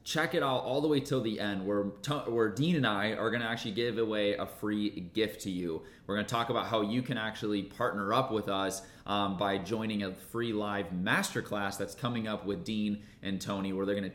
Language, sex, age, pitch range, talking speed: English, male, 20-39, 100-115 Hz, 225 wpm